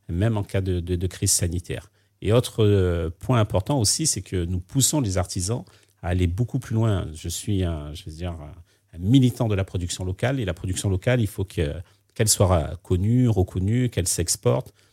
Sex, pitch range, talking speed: male, 90-115 Hz, 195 wpm